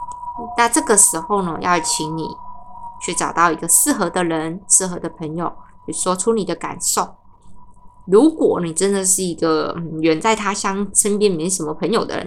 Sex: female